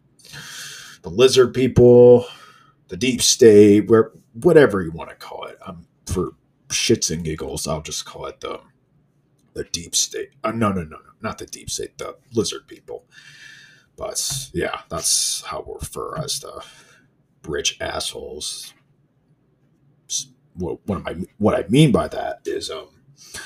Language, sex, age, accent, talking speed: English, male, 40-59, American, 145 wpm